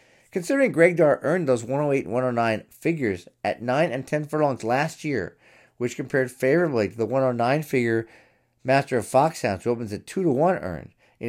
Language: English